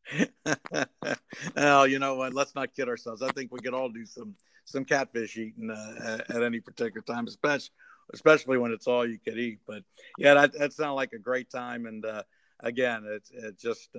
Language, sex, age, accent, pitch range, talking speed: English, male, 50-69, American, 110-125 Hz, 200 wpm